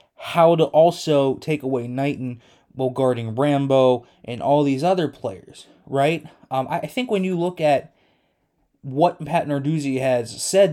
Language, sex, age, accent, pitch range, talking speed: English, male, 20-39, American, 130-165 Hz, 150 wpm